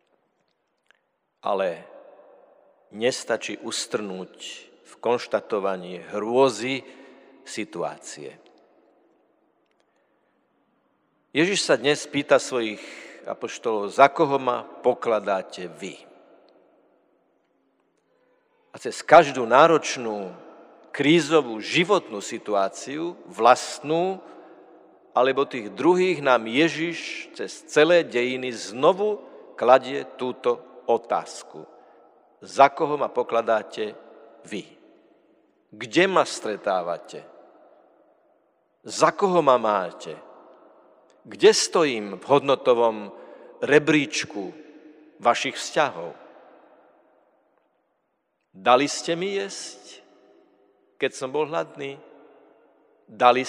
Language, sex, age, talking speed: Slovak, male, 50-69, 75 wpm